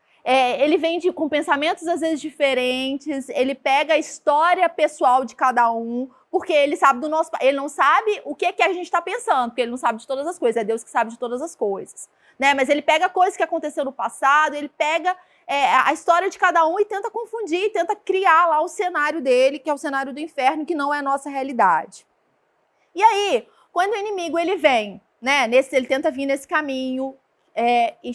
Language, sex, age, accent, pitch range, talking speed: Portuguese, female, 30-49, Brazilian, 265-370 Hz, 220 wpm